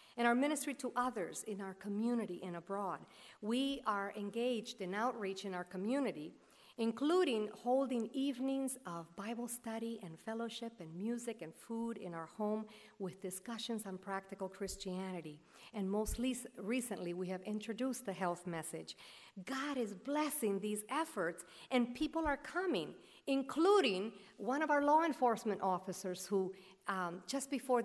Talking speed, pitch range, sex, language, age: 145 wpm, 190-250 Hz, female, English, 50-69